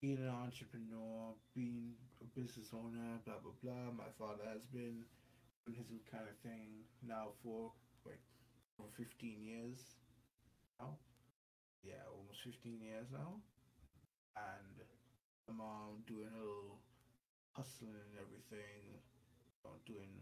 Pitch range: 115-125 Hz